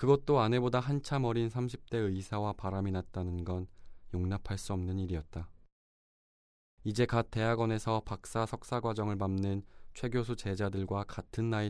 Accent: native